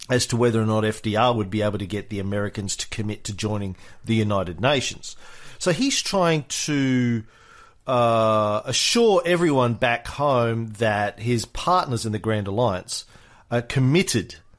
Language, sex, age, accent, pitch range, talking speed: English, male, 40-59, Australian, 105-140 Hz, 155 wpm